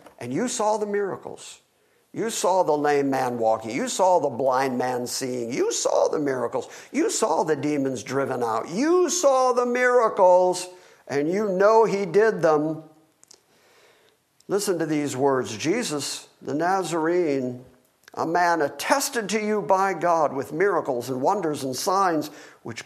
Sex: male